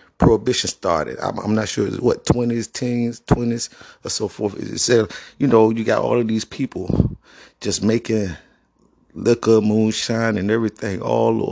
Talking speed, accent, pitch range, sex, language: 160 wpm, American, 105-120 Hz, male, English